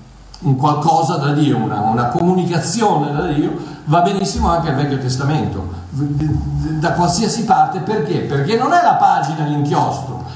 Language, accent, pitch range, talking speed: Italian, native, 140-225 Hz, 140 wpm